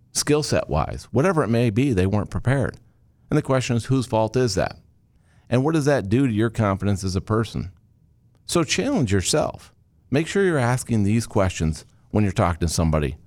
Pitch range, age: 100-135 Hz, 50-69